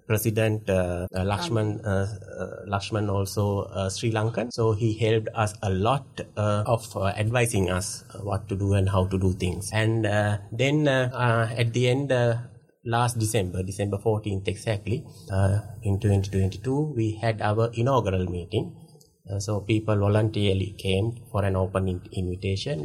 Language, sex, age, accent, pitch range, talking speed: English, male, 30-49, Indian, 95-115 Hz, 165 wpm